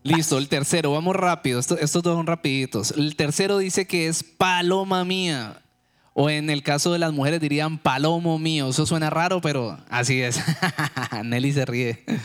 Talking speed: 175 wpm